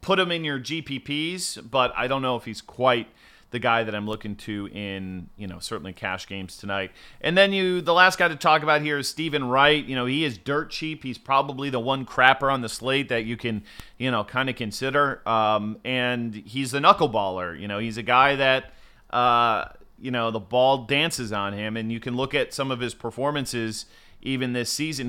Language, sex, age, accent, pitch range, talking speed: English, male, 30-49, American, 110-145 Hz, 220 wpm